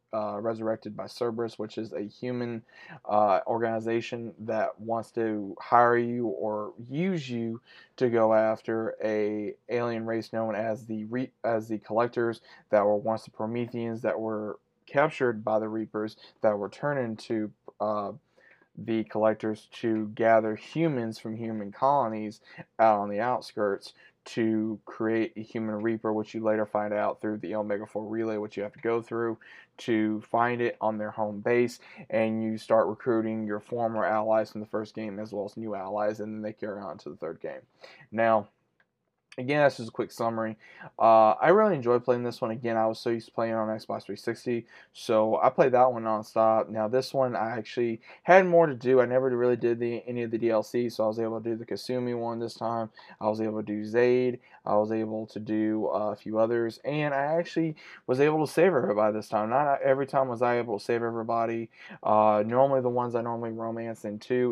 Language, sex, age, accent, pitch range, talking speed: English, male, 20-39, American, 110-120 Hz, 200 wpm